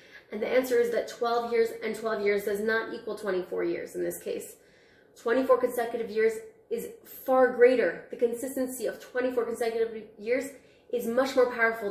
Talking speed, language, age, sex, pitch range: 170 wpm, English, 20-39, female, 200-250 Hz